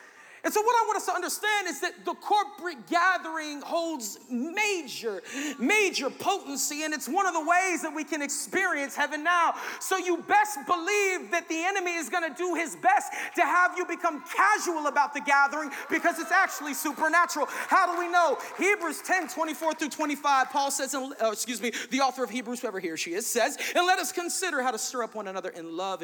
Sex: male